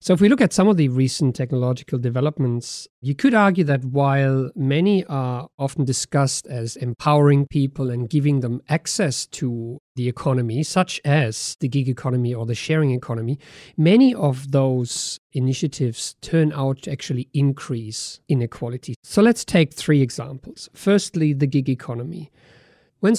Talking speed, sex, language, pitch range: 155 wpm, male, English, 125-160 Hz